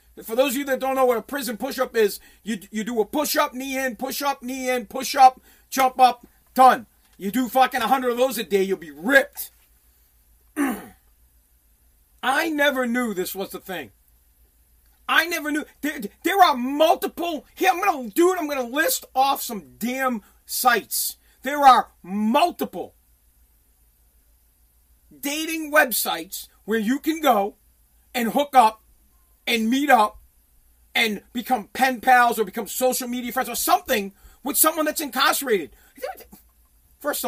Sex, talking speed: male, 160 wpm